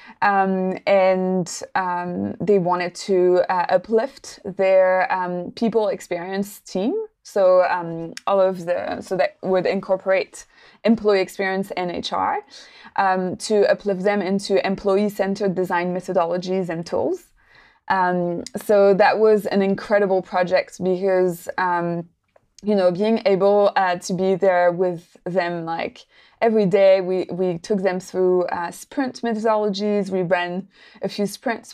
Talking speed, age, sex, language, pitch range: 130 wpm, 20-39, female, English, 185-215 Hz